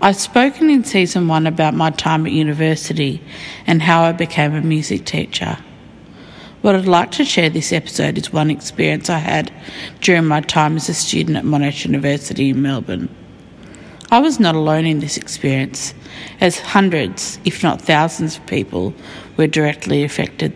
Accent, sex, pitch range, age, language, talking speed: Australian, female, 145-180 Hz, 50-69, English, 165 wpm